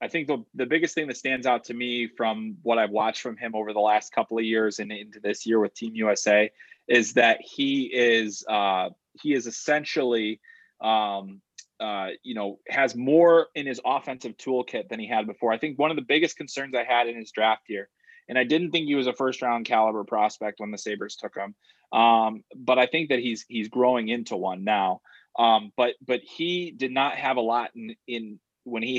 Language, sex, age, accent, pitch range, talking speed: English, male, 20-39, American, 115-155 Hz, 215 wpm